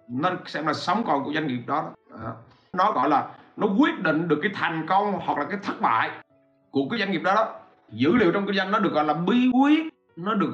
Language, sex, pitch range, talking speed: Vietnamese, male, 130-195 Hz, 240 wpm